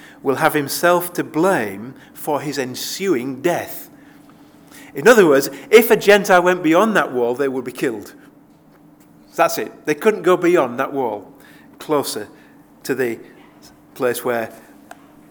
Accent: British